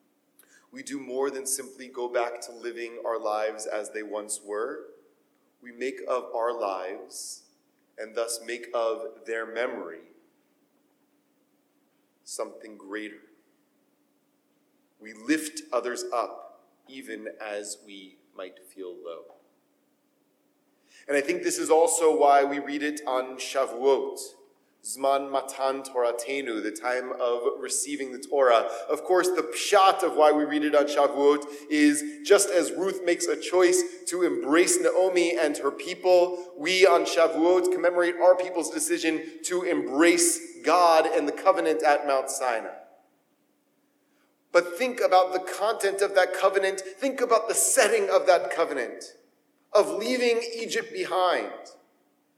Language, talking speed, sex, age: English, 135 wpm, male, 30-49